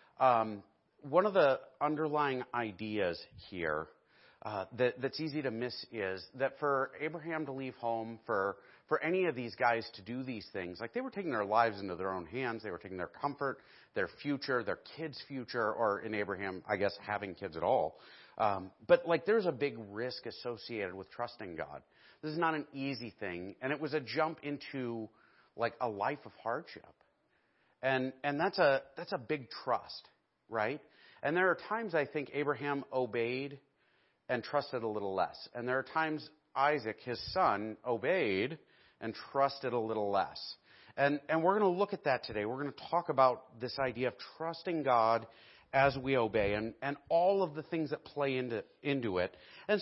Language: English